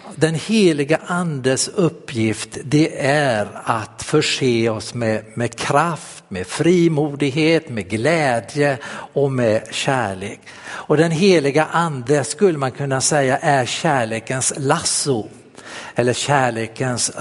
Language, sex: Swedish, male